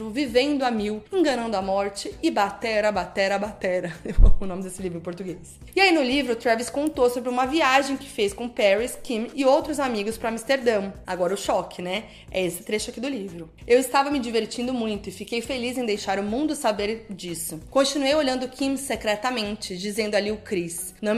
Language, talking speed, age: Portuguese, 195 wpm, 20-39